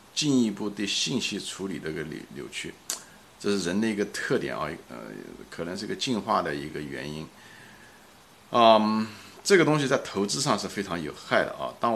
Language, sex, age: Chinese, male, 50-69